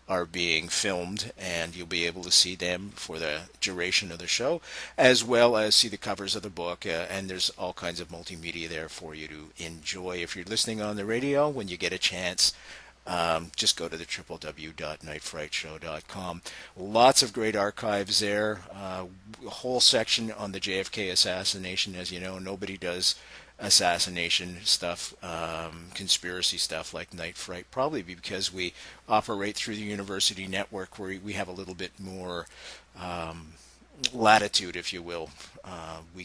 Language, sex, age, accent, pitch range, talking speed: English, male, 50-69, American, 85-100 Hz, 180 wpm